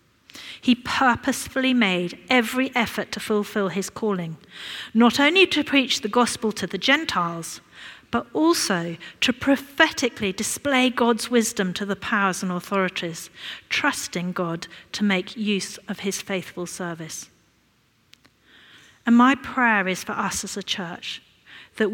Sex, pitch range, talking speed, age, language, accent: female, 190-235 Hz, 135 wpm, 40-59, English, British